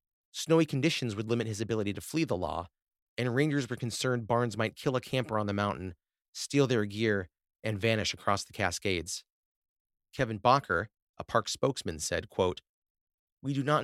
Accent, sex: American, male